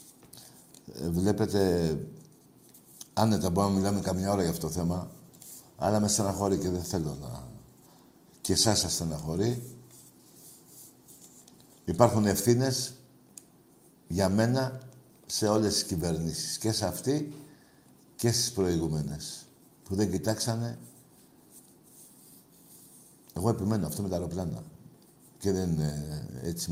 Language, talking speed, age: Greek, 105 wpm, 60-79